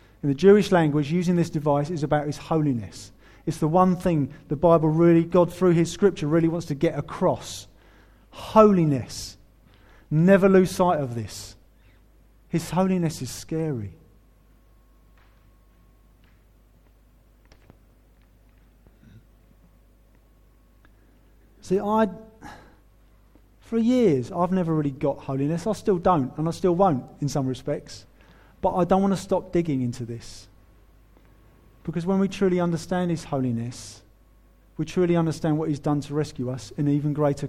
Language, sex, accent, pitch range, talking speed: English, male, British, 110-160 Hz, 135 wpm